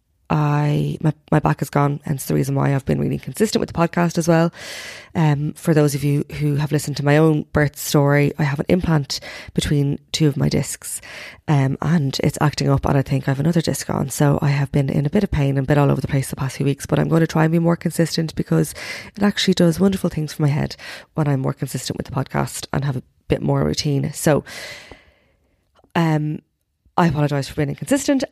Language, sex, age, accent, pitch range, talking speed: English, female, 20-39, Irish, 145-160 Hz, 235 wpm